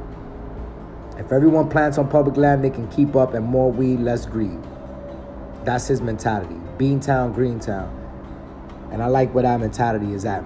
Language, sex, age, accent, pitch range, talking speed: English, male, 20-39, American, 100-140 Hz, 165 wpm